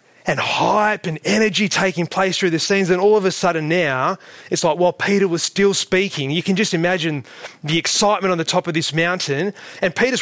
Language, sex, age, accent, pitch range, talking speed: English, male, 20-39, Australian, 150-190 Hz, 210 wpm